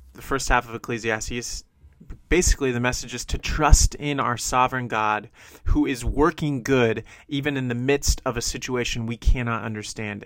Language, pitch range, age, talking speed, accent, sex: English, 90-135 Hz, 30-49, 170 wpm, American, male